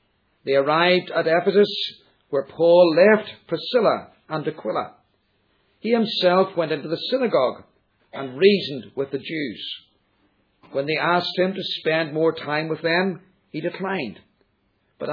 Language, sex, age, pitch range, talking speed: English, male, 50-69, 145-195 Hz, 135 wpm